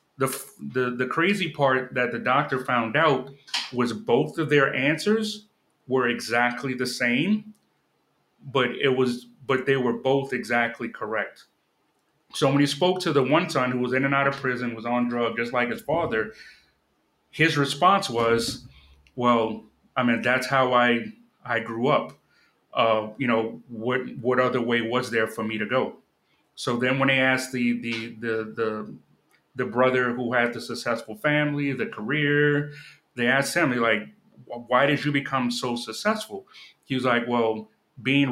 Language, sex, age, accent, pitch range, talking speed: English, male, 30-49, American, 120-140 Hz, 170 wpm